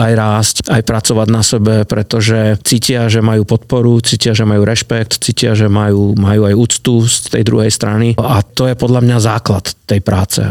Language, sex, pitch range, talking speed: Slovak, male, 105-120 Hz, 190 wpm